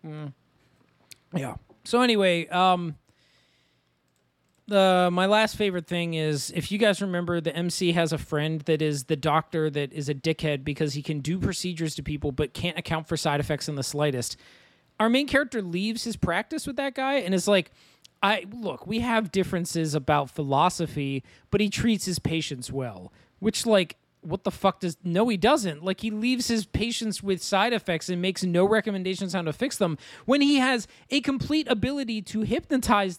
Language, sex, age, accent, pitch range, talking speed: English, male, 20-39, American, 150-210 Hz, 185 wpm